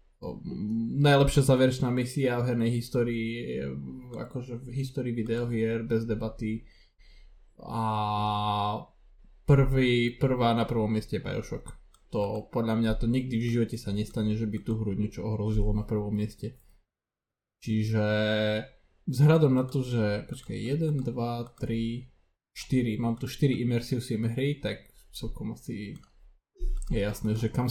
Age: 20-39